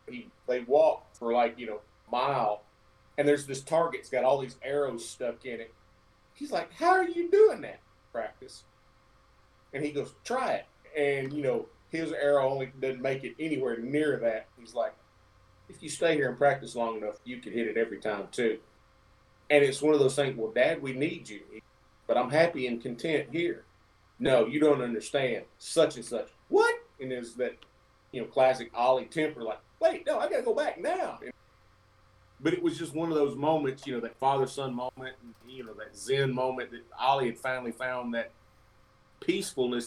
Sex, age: male, 40-59